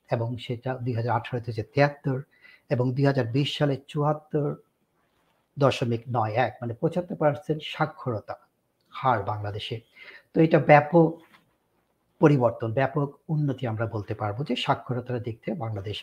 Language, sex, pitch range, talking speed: Bengali, male, 120-150 Hz, 120 wpm